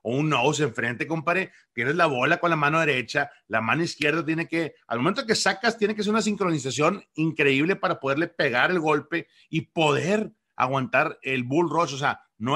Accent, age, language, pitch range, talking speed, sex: Mexican, 40-59, English, 110-150 Hz, 190 wpm, male